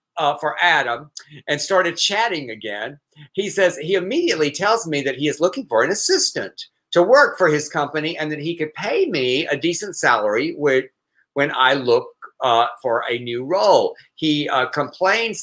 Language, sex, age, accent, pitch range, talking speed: English, male, 50-69, American, 150-235 Hz, 175 wpm